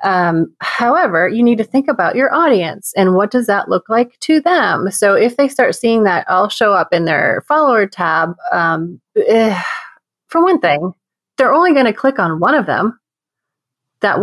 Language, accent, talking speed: English, American, 190 wpm